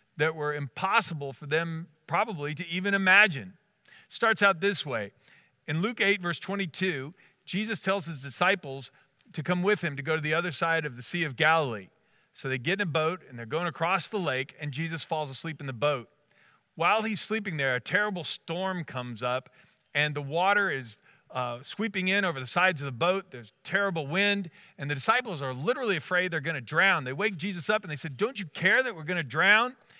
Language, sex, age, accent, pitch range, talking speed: English, male, 50-69, American, 145-195 Hz, 215 wpm